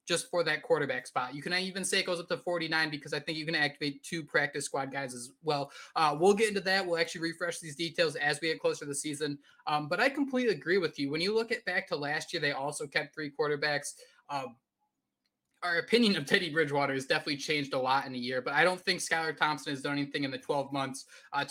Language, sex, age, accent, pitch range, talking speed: English, male, 20-39, American, 150-220 Hz, 255 wpm